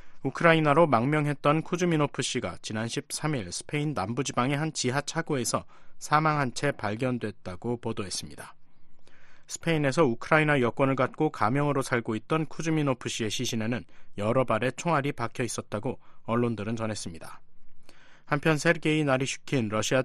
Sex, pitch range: male, 115-150 Hz